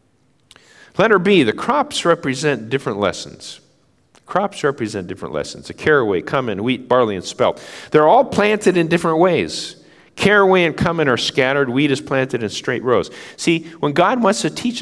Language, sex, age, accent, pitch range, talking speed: English, male, 50-69, American, 120-160 Hz, 165 wpm